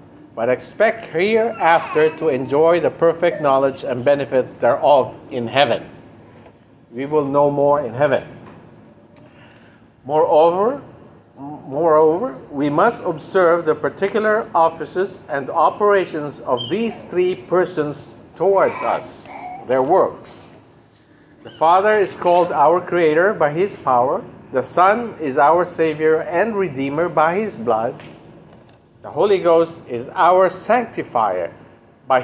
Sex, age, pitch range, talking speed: male, 50-69, 140-190 Hz, 115 wpm